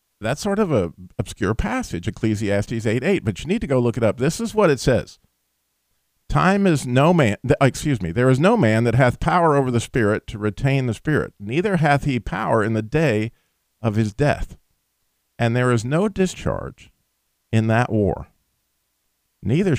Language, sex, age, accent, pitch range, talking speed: English, male, 50-69, American, 105-175 Hz, 180 wpm